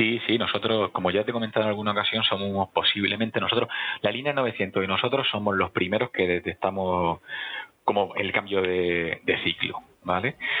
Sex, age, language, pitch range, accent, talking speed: male, 30-49, Spanish, 90-105 Hz, Spanish, 175 wpm